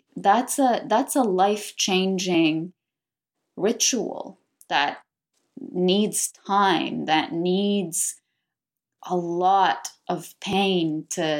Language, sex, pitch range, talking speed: English, female, 160-190 Hz, 85 wpm